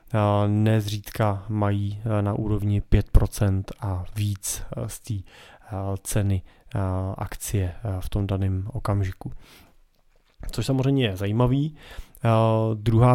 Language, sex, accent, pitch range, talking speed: Czech, male, native, 105-115 Hz, 90 wpm